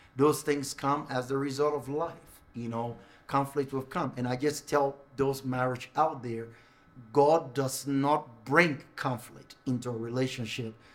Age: 50-69